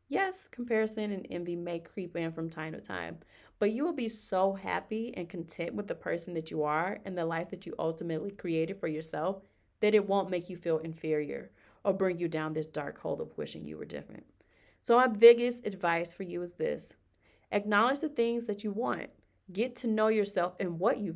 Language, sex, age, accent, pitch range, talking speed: English, female, 30-49, American, 165-215 Hz, 210 wpm